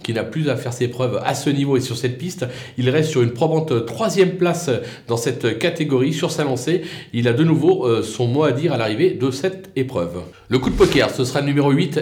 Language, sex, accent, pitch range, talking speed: French, male, French, 130-175 Hz, 245 wpm